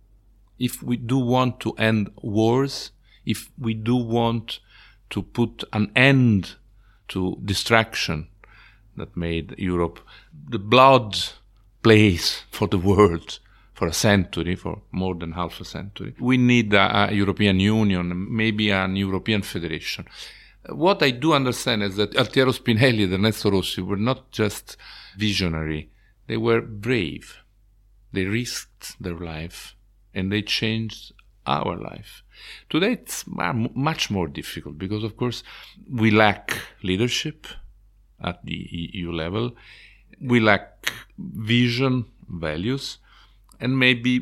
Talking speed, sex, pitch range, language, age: 125 wpm, male, 95-115 Hz, English, 50-69